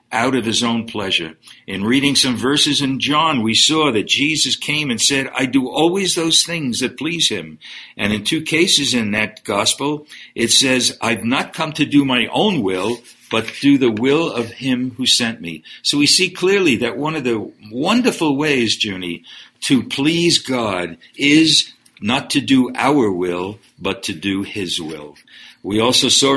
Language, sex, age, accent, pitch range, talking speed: English, male, 60-79, American, 110-150 Hz, 180 wpm